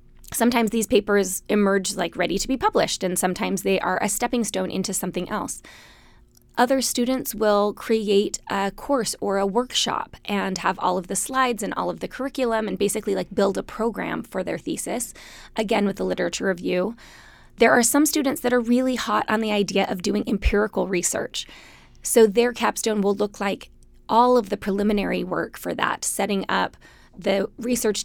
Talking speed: 180 wpm